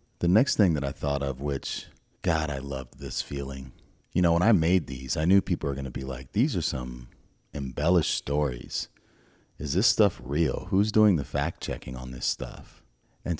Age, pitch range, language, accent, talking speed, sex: 30-49, 65-90 Hz, English, American, 200 wpm, male